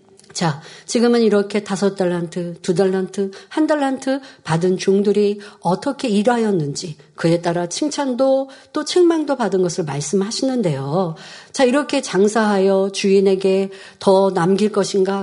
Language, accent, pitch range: Korean, native, 180-250 Hz